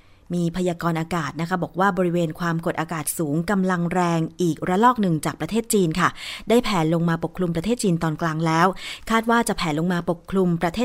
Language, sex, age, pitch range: Thai, female, 20-39, 170-210 Hz